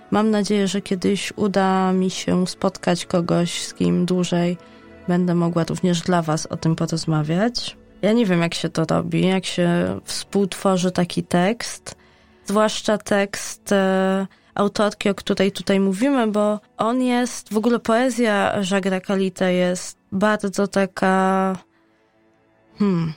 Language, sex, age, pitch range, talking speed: Polish, female, 20-39, 180-205 Hz, 135 wpm